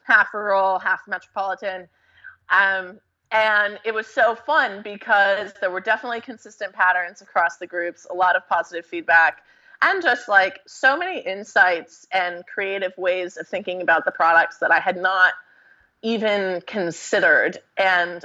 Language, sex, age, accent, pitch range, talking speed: English, female, 20-39, American, 175-210 Hz, 150 wpm